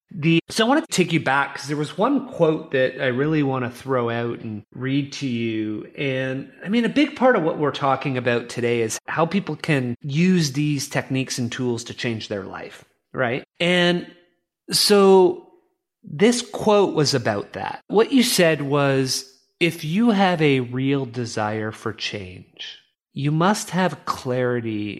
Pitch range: 120-165 Hz